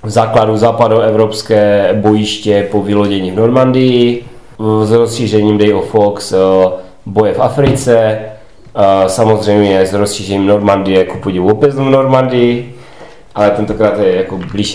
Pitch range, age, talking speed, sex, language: 100-120 Hz, 30-49, 120 wpm, male, Czech